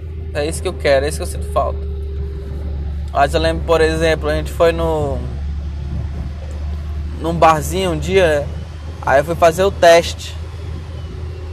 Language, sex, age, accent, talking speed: Portuguese, male, 20-39, Brazilian, 160 wpm